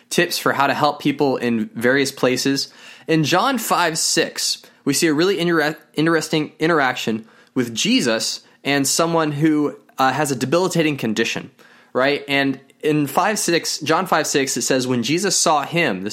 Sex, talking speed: male, 155 wpm